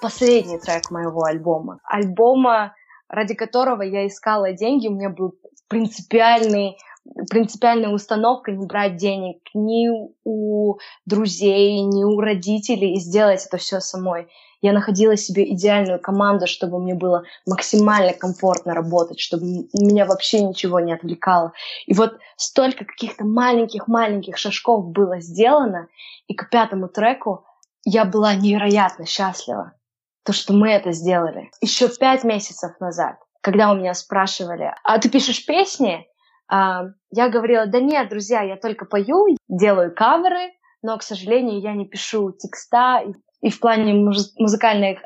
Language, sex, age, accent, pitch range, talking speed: Russian, female, 20-39, native, 190-225 Hz, 135 wpm